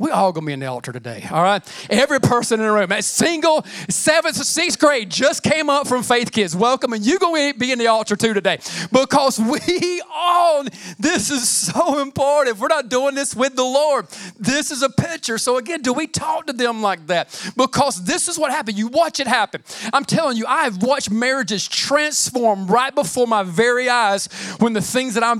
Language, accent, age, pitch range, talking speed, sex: English, American, 40-59, 220-315 Hz, 220 wpm, male